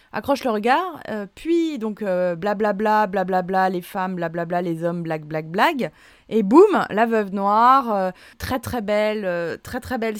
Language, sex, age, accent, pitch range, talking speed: French, female, 20-39, French, 185-235 Hz, 210 wpm